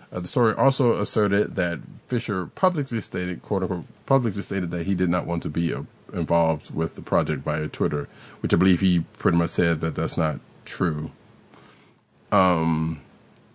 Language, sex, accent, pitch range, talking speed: English, male, American, 80-95 Hz, 175 wpm